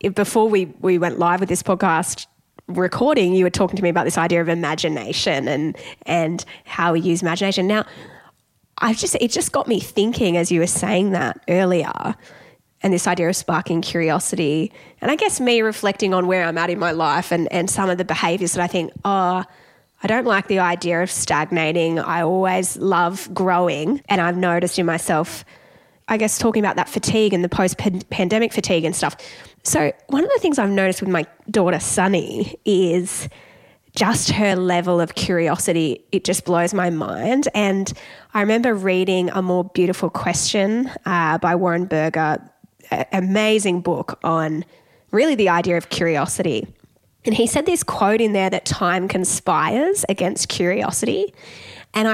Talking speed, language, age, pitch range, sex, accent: 175 wpm, English, 10-29, 170-205 Hz, female, Australian